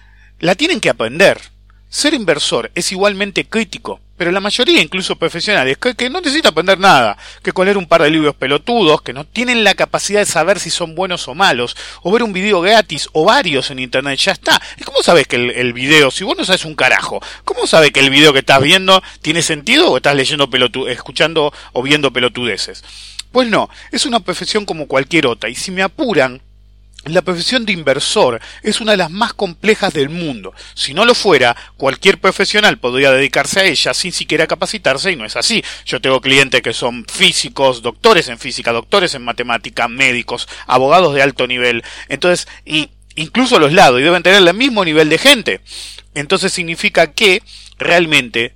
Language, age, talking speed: English, 40-59, 195 wpm